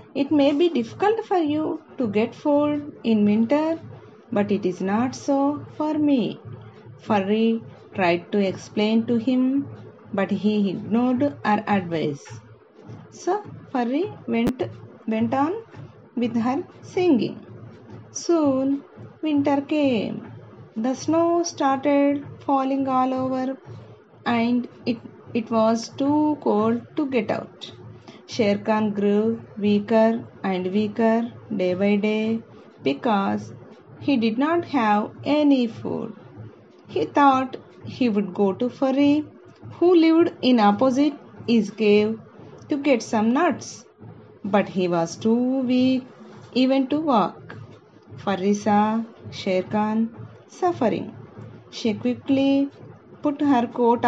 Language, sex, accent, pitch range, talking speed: Telugu, female, native, 210-280 Hz, 120 wpm